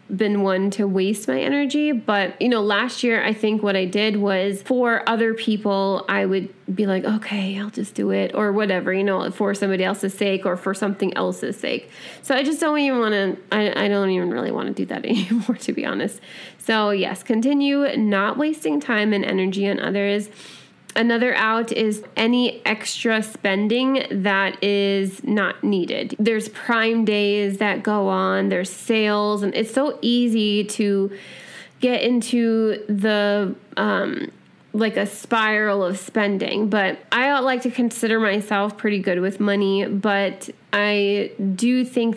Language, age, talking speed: English, 20-39, 165 wpm